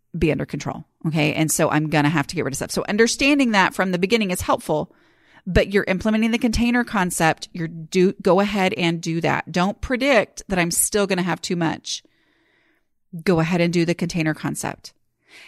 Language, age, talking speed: English, 30-49, 205 wpm